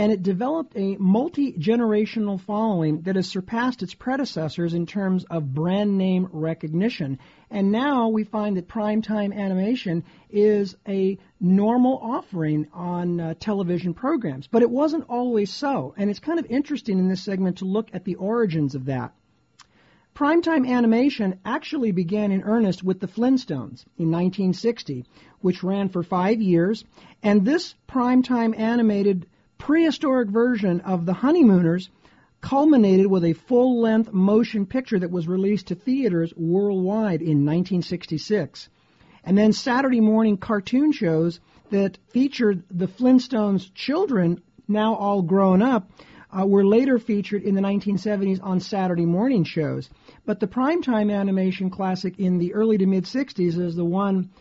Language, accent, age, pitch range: English, American, 50-69, 180-230 Hz